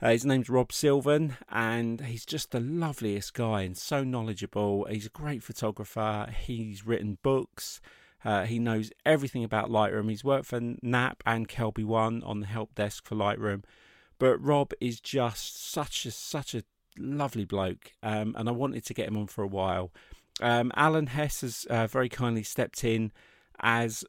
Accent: British